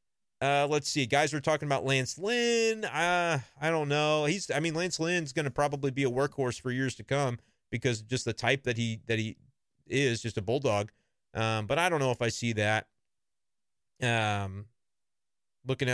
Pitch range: 115-145 Hz